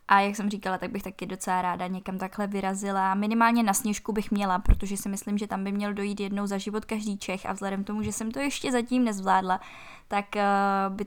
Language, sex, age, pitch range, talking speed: Czech, female, 10-29, 185-210 Hz, 230 wpm